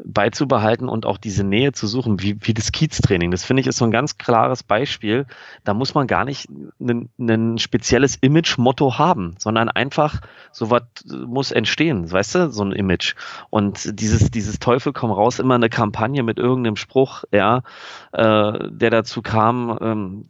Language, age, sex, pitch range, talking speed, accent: German, 30-49, male, 100-120 Hz, 175 wpm, German